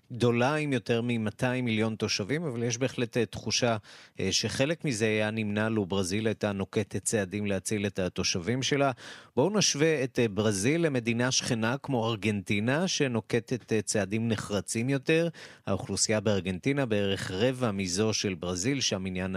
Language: Hebrew